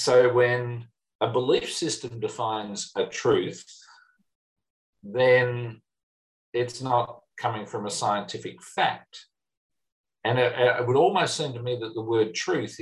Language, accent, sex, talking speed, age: English, Australian, male, 130 wpm, 50-69